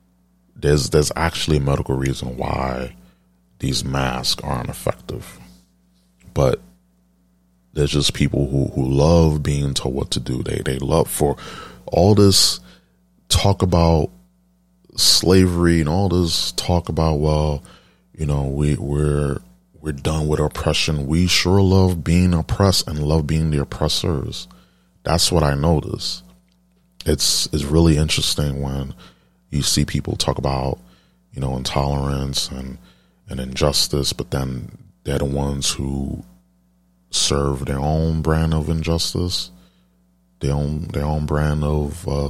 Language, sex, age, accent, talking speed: English, male, 30-49, American, 135 wpm